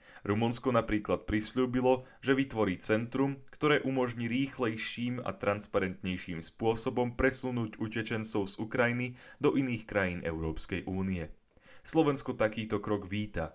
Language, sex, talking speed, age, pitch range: Slovak, male, 110 wpm, 10-29, 95-125 Hz